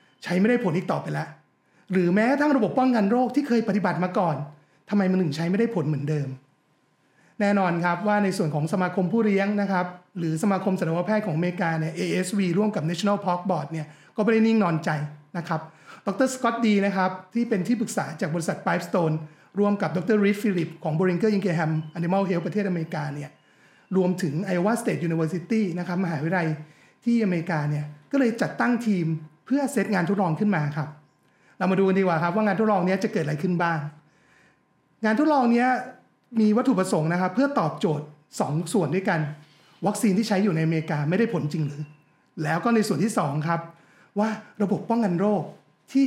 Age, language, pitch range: 30-49, Thai, 160-210 Hz